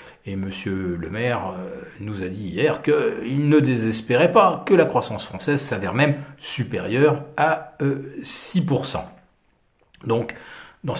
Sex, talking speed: male, 130 wpm